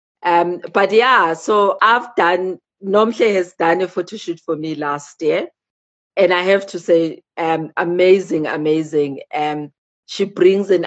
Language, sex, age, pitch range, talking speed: English, female, 40-59, 150-190 Hz, 155 wpm